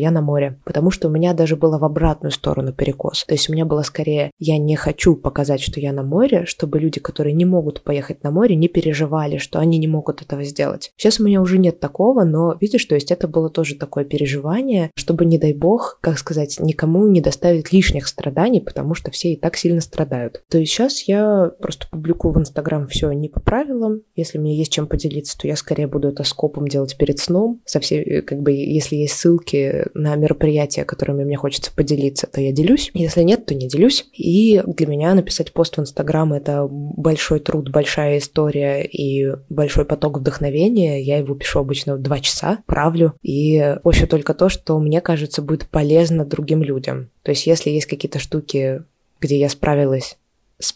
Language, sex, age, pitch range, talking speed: Russian, female, 20-39, 145-170 Hz, 195 wpm